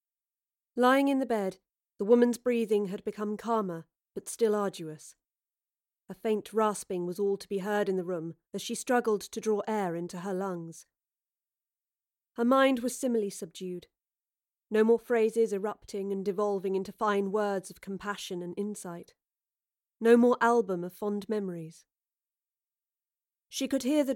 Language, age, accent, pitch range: English, 40-59, British, 190-235 Hz